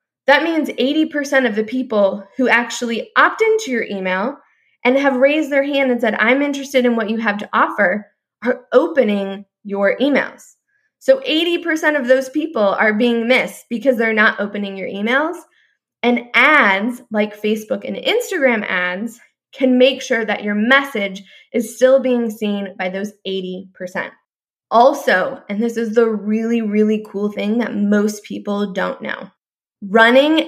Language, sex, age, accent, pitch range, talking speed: English, female, 20-39, American, 210-265 Hz, 160 wpm